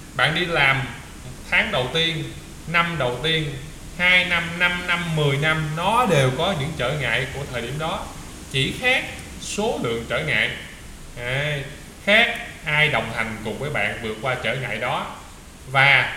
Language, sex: Vietnamese, male